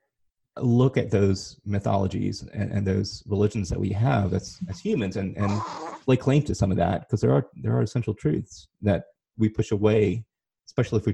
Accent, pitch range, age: American, 100-120 Hz, 30-49